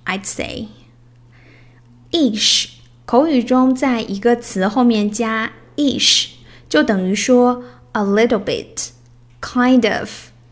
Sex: female